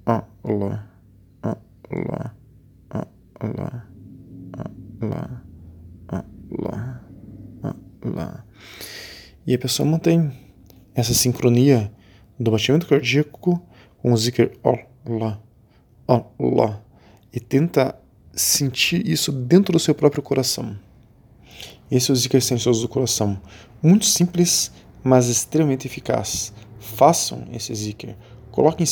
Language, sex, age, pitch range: Portuguese, male, 20-39, 105-135 Hz